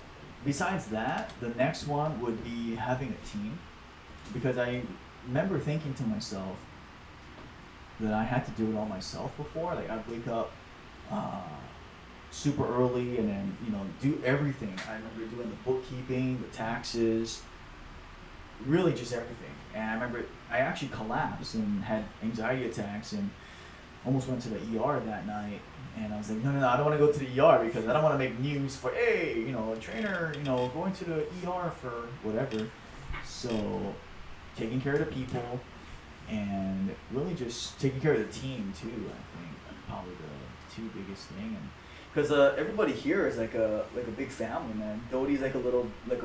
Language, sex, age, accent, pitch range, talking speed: English, male, 30-49, American, 110-135 Hz, 185 wpm